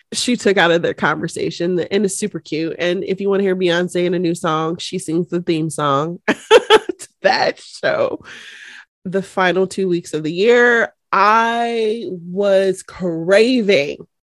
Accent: American